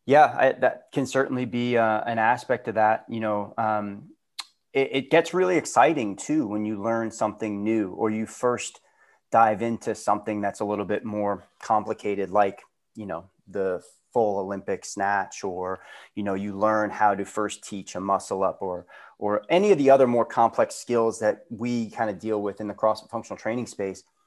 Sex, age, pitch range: male, 30-49, 105-125 Hz